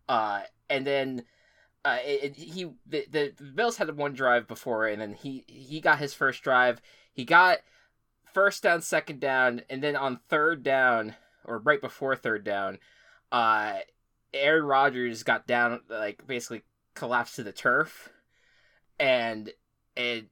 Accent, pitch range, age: American, 115-145 Hz, 20-39